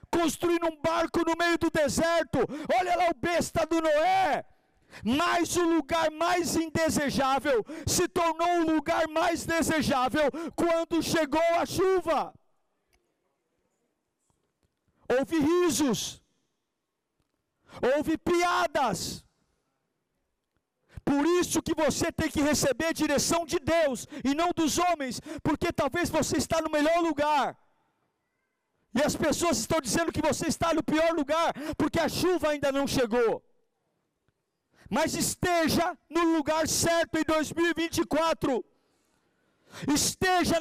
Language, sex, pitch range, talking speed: Portuguese, male, 315-345 Hz, 115 wpm